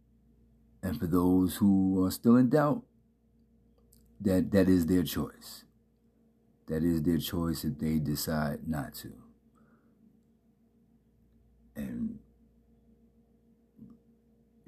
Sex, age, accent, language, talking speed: male, 60-79, American, English, 100 wpm